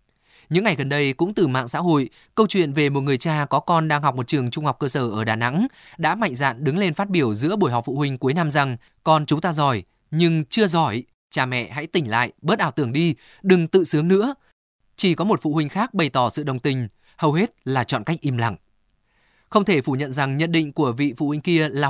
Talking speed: 260 wpm